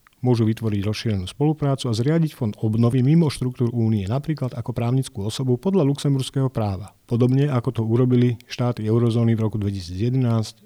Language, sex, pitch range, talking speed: Slovak, male, 110-135 Hz, 150 wpm